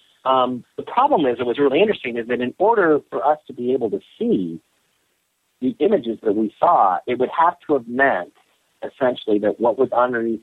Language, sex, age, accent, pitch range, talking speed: English, male, 50-69, American, 105-130 Hz, 200 wpm